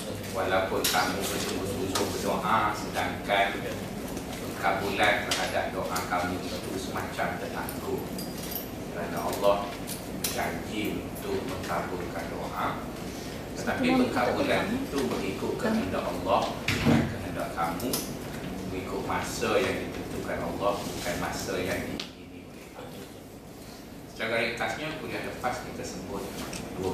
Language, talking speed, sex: Malay, 95 wpm, male